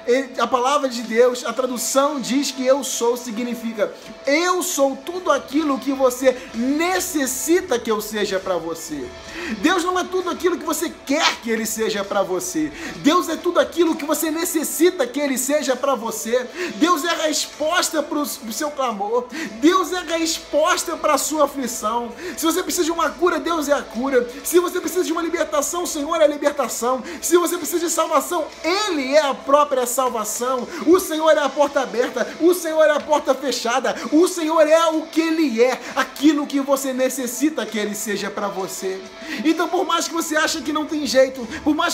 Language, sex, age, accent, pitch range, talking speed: Portuguese, male, 20-39, Brazilian, 255-320 Hz, 195 wpm